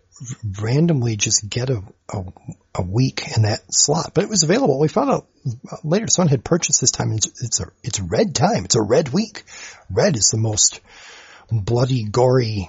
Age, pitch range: 40-59, 105-145 Hz